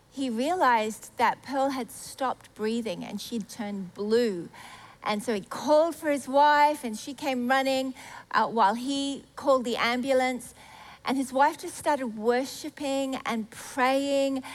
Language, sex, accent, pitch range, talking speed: English, female, Australian, 235-280 Hz, 150 wpm